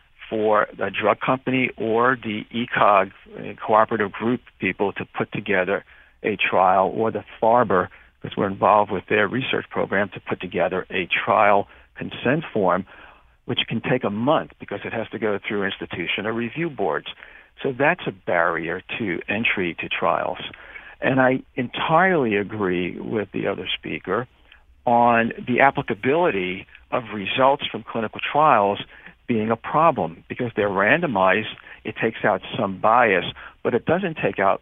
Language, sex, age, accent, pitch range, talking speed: English, male, 60-79, American, 100-135 Hz, 150 wpm